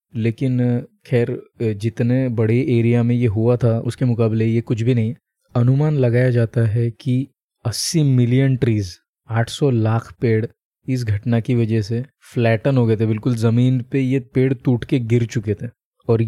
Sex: male